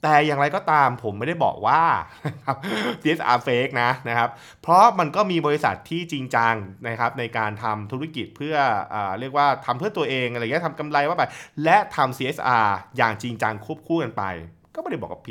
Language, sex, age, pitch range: Thai, male, 20-39, 105-130 Hz